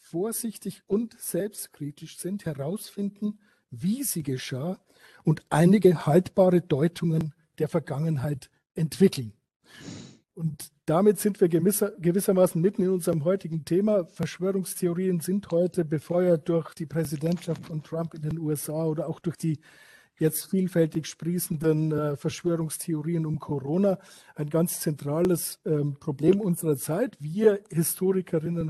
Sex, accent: male, German